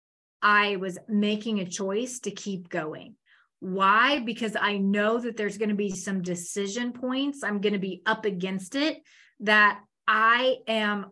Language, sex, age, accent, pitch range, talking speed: English, female, 30-49, American, 190-230 Hz, 160 wpm